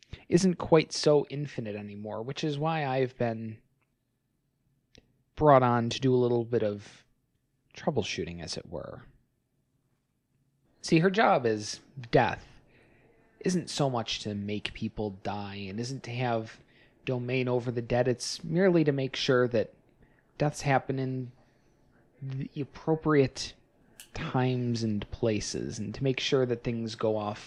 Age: 30-49